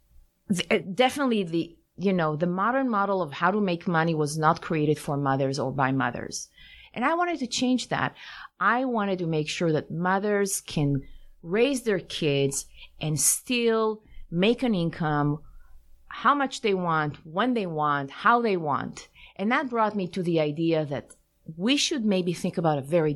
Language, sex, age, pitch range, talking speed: English, female, 30-49, 150-230 Hz, 175 wpm